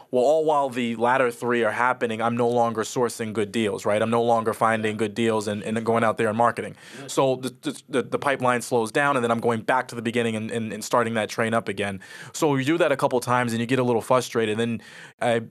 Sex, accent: male, American